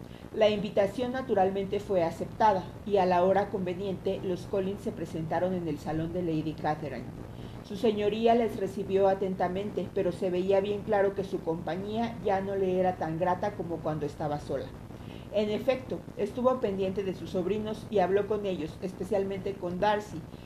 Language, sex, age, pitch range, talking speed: Spanish, female, 40-59, 175-210 Hz, 165 wpm